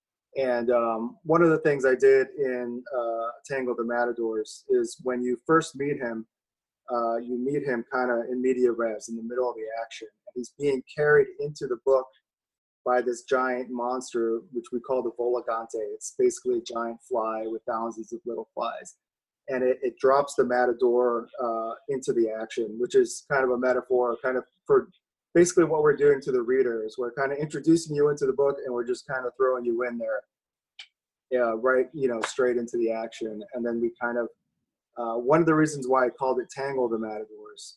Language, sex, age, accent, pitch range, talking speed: English, male, 30-49, American, 120-150 Hz, 205 wpm